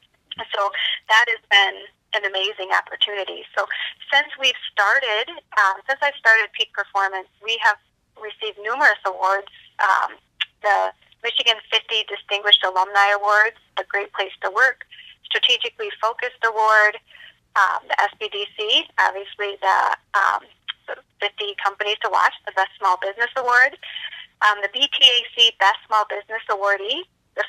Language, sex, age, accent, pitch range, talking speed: English, female, 20-39, American, 195-225 Hz, 135 wpm